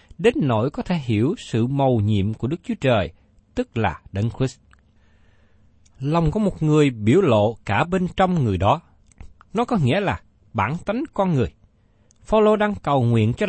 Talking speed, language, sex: 180 wpm, Vietnamese, male